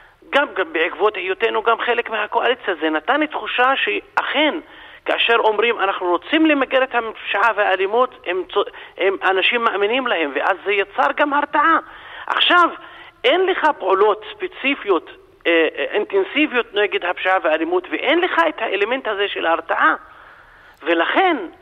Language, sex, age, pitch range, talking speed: Hebrew, male, 50-69, 220-330 Hz, 135 wpm